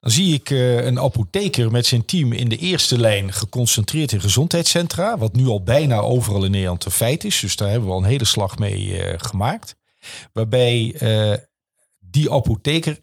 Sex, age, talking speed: male, 50-69, 175 wpm